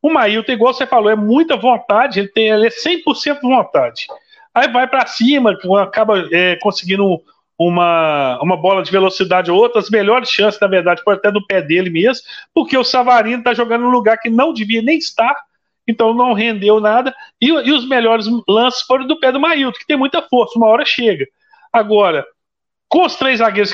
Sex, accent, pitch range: male, Brazilian, 195-255 Hz